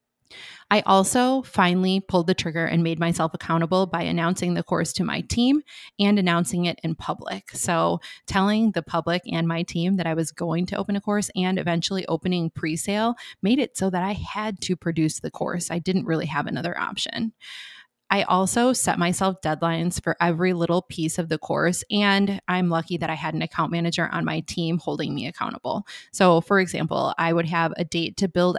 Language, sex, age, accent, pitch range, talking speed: English, female, 20-39, American, 165-190 Hz, 195 wpm